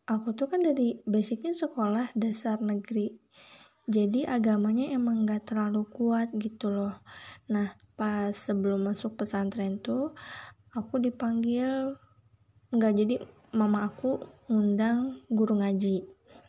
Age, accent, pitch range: 20-39, native, 205-235 Hz